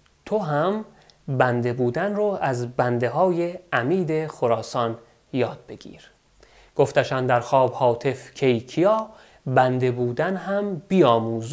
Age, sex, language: 30-49, male, Persian